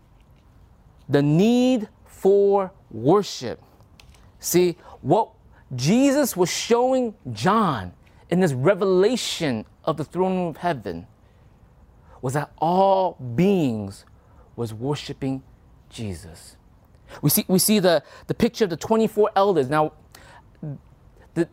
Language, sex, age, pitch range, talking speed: English, male, 30-49, 140-220 Hz, 105 wpm